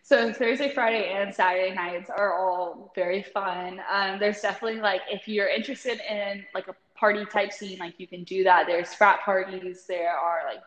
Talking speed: 185 wpm